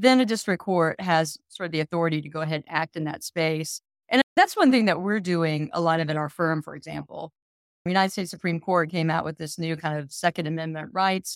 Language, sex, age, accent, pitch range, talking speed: English, female, 30-49, American, 160-185 Hz, 250 wpm